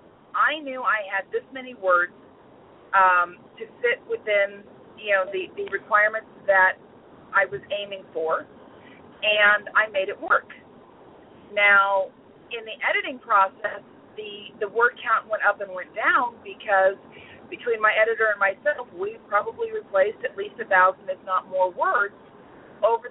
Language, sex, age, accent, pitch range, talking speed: English, female, 40-59, American, 195-275 Hz, 150 wpm